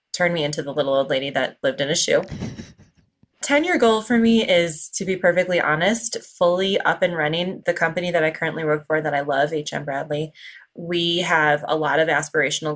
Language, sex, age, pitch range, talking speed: English, female, 20-39, 150-170 Hz, 200 wpm